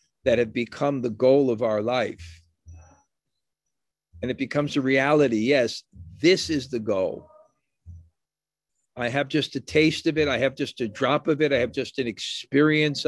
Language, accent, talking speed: English, American, 170 wpm